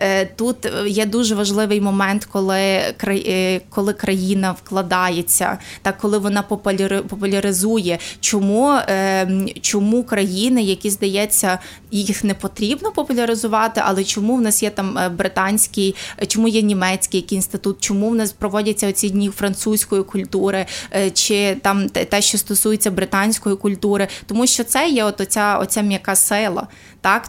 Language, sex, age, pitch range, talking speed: Ukrainian, female, 20-39, 190-215 Hz, 125 wpm